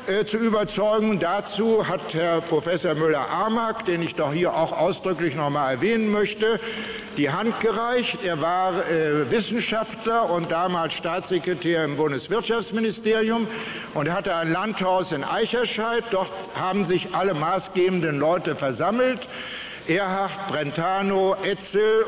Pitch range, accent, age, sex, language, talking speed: 155-215 Hz, German, 60-79, male, German, 130 wpm